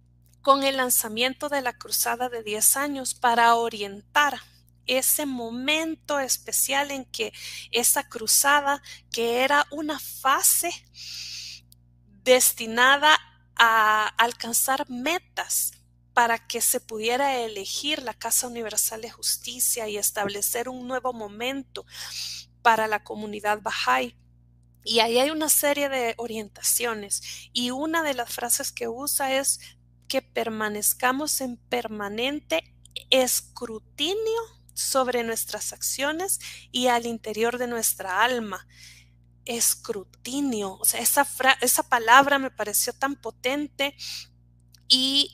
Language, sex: Spanish, female